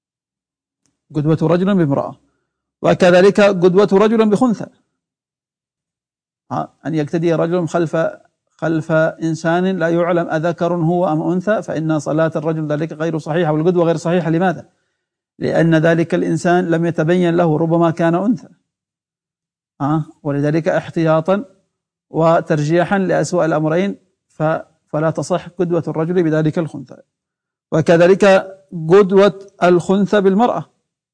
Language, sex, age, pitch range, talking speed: Arabic, male, 50-69, 160-180 Hz, 105 wpm